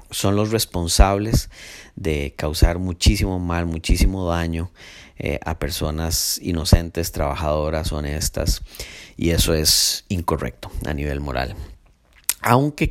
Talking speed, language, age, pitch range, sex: 105 wpm, Spanish, 30-49, 80-105 Hz, male